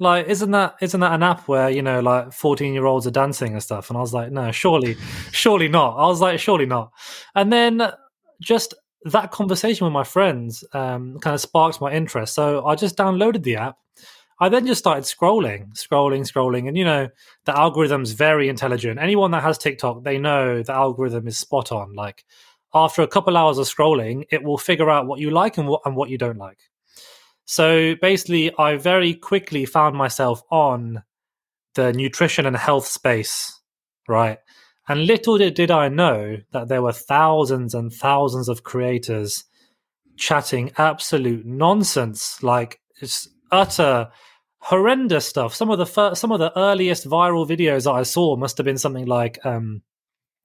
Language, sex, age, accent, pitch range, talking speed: English, male, 20-39, British, 125-175 Hz, 175 wpm